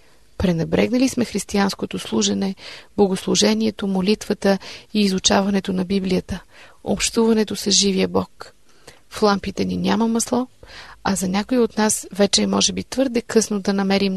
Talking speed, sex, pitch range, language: 135 wpm, female, 190-225 Hz, Bulgarian